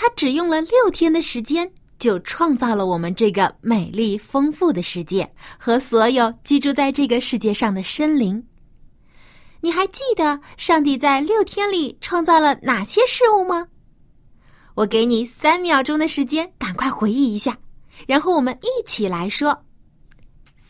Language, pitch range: Chinese, 235-370 Hz